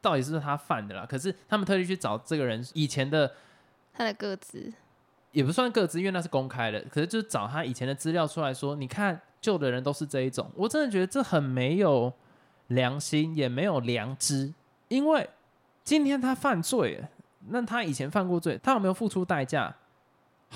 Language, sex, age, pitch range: Chinese, male, 20-39, 135-215 Hz